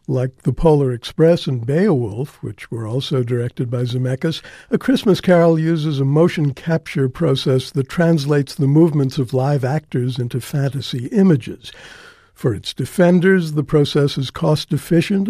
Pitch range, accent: 130-160 Hz, American